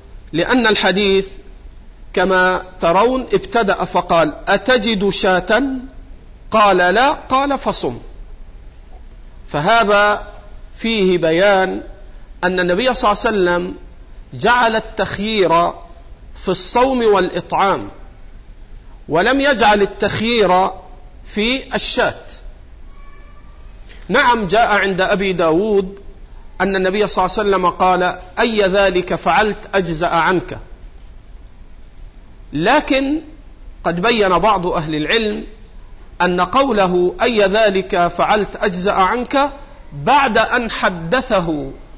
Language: Arabic